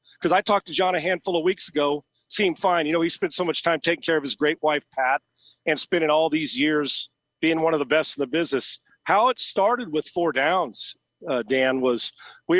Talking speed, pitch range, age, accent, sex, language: 235 wpm, 155-210 Hz, 50-69, American, male, English